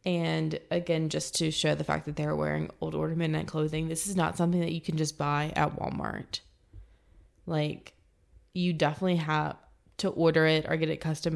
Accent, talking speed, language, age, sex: American, 185 wpm, English, 20-39, female